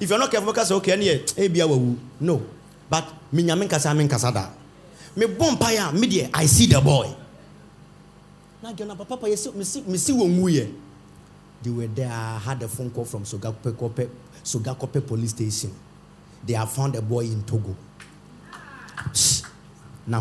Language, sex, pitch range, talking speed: English, male, 115-160 Hz, 90 wpm